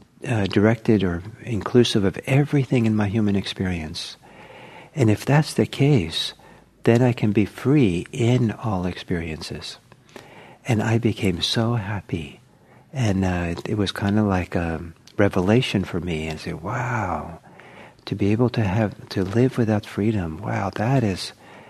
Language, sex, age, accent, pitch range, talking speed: English, male, 60-79, American, 95-120 Hz, 150 wpm